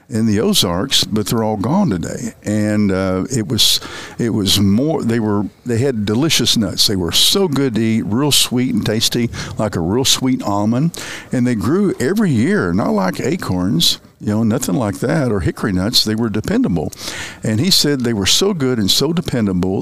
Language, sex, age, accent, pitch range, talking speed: English, male, 60-79, American, 100-130 Hz, 195 wpm